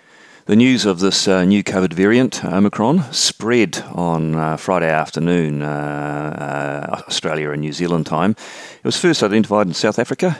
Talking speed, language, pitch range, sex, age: 160 wpm, English, 80-105 Hz, male, 40-59